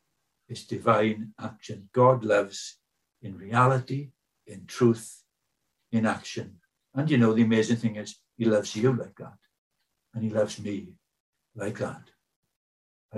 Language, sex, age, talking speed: English, male, 60-79, 135 wpm